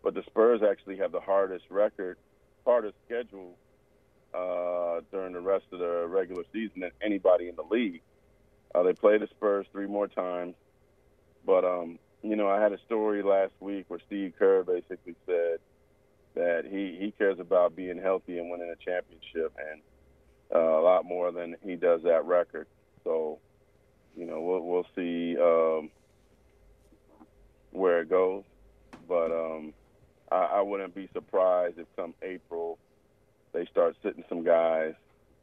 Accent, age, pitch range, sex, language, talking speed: American, 40-59, 85-105 Hz, male, English, 155 wpm